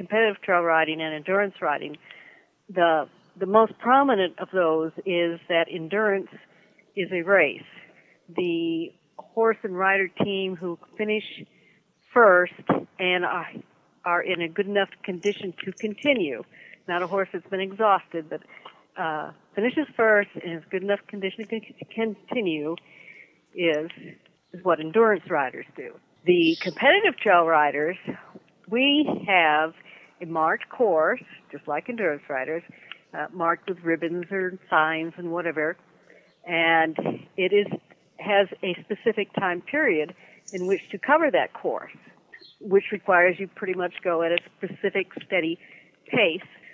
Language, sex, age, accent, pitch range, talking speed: English, female, 60-79, American, 170-205 Hz, 130 wpm